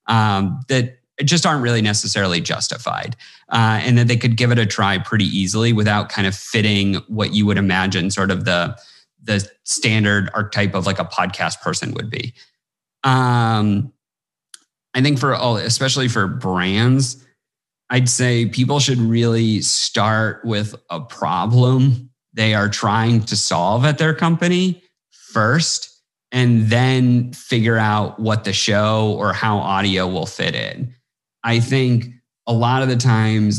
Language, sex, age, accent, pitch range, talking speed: English, male, 30-49, American, 105-125 Hz, 150 wpm